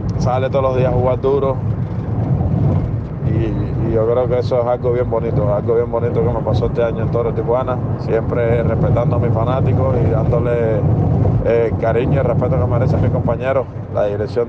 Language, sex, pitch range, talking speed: Spanish, male, 120-145 Hz, 190 wpm